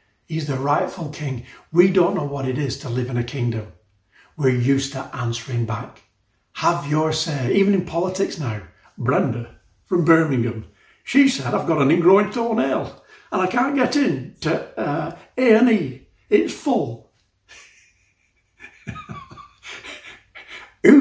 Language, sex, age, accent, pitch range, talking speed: English, male, 60-79, British, 115-160 Hz, 135 wpm